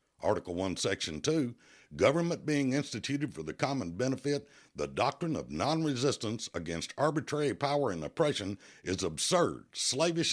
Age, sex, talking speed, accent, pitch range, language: 60-79, male, 135 wpm, American, 100-145 Hz, English